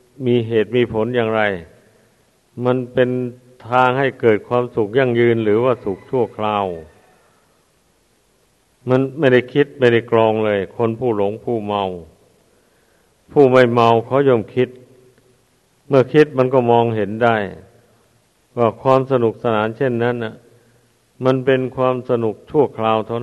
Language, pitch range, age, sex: Thai, 110-130 Hz, 60-79, male